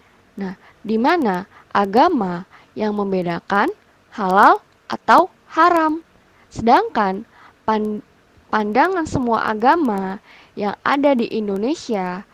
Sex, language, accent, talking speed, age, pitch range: female, Indonesian, native, 85 wpm, 20-39, 200-260 Hz